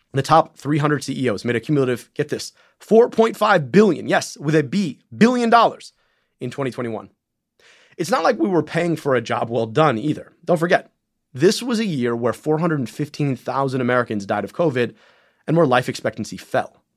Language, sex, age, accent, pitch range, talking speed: English, male, 30-49, American, 120-160 Hz, 170 wpm